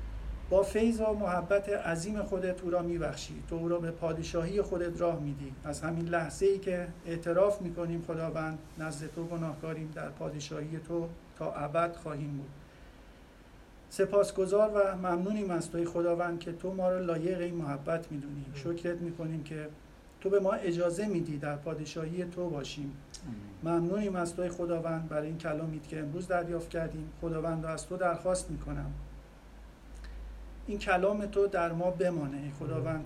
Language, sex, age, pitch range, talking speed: Persian, male, 40-59, 155-185 Hz, 150 wpm